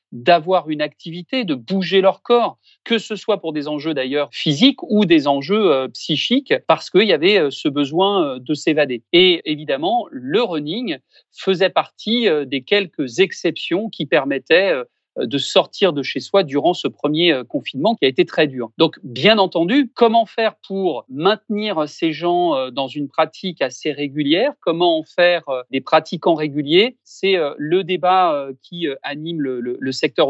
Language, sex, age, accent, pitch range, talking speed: French, male, 40-59, French, 150-210 Hz, 160 wpm